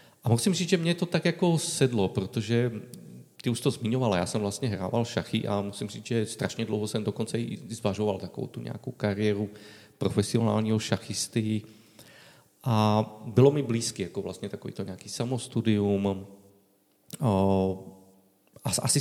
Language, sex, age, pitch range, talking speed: Czech, male, 40-59, 110-140 Hz, 145 wpm